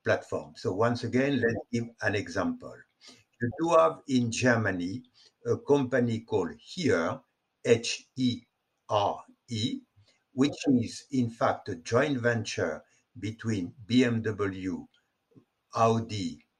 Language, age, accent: English, 60-79, French